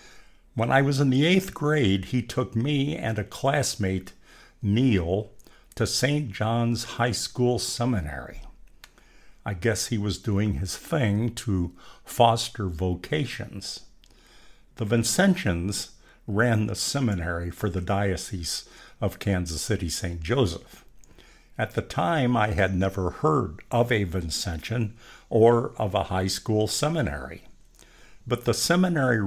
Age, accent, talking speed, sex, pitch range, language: 60-79, American, 125 wpm, male, 95-125 Hz, English